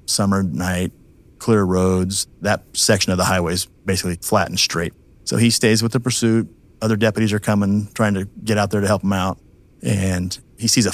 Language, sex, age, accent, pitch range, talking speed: English, male, 30-49, American, 95-110 Hz, 205 wpm